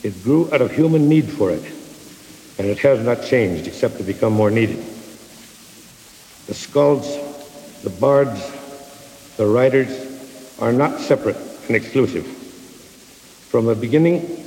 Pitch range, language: 130-165 Hz, English